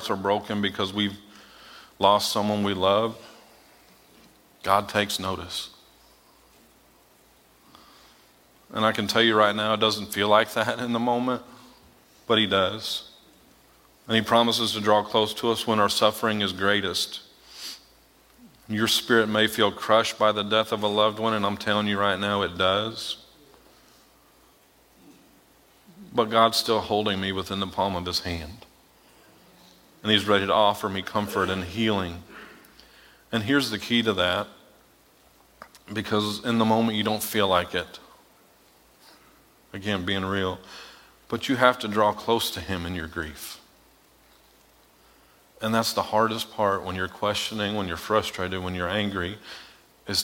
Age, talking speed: 40-59, 150 wpm